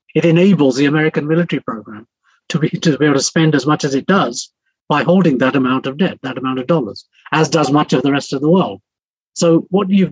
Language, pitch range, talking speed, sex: English, 135-170 Hz, 235 wpm, male